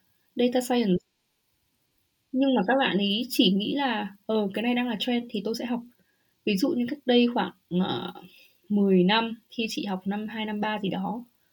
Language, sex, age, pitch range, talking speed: Vietnamese, female, 20-39, 190-245 Hz, 205 wpm